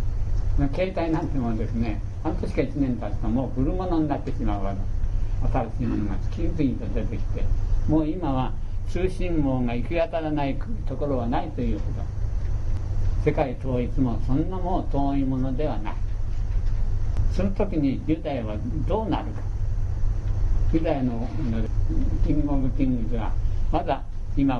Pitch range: 100-130 Hz